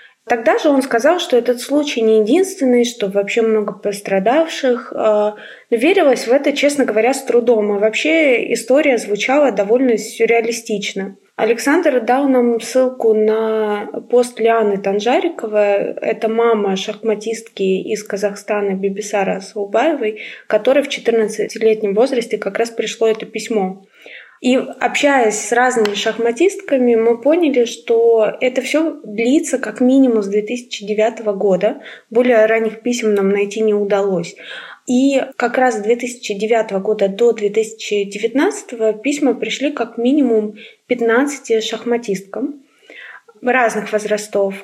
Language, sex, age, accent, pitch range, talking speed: Russian, female, 20-39, native, 210-255 Hz, 120 wpm